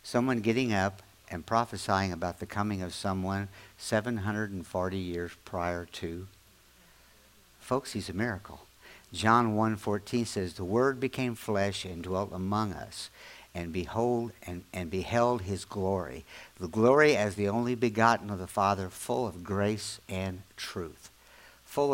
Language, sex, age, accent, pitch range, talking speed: English, male, 60-79, American, 85-110 Hz, 140 wpm